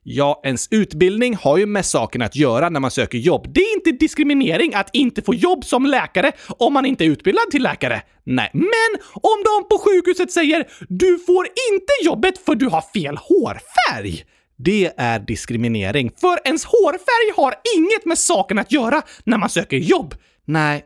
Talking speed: 180 wpm